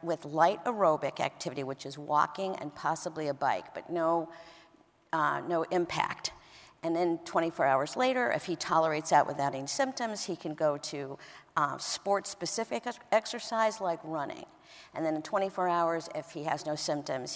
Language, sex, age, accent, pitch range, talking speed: English, female, 50-69, American, 160-205 Hz, 165 wpm